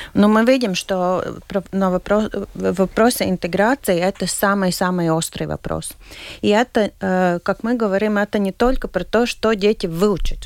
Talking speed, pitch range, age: 140 wpm, 170-210 Hz, 30-49